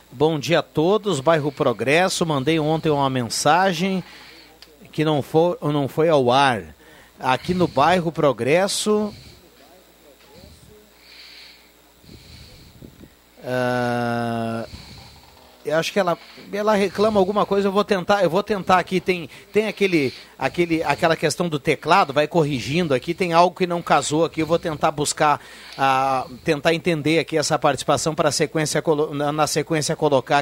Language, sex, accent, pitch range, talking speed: Portuguese, male, Brazilian, 150-185 Hz, 135 wpm